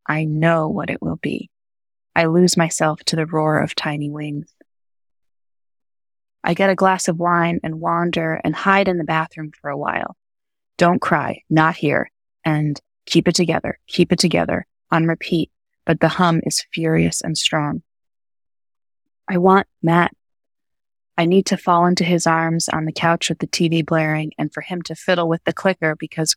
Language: English